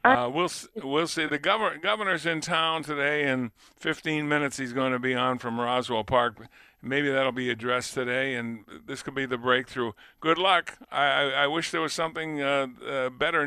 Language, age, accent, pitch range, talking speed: English, 50-69, American, 125-155 Hz, 195 wpm